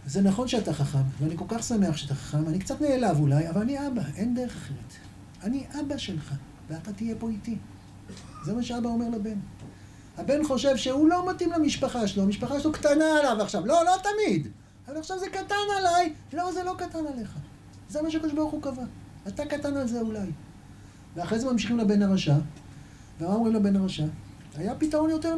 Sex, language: male, Hebrew